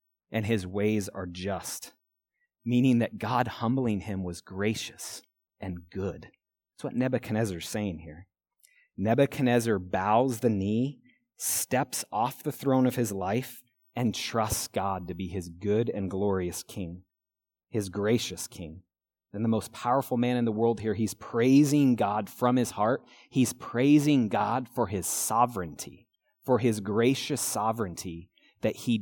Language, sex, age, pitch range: English, male, 30-49, 95-120 Hz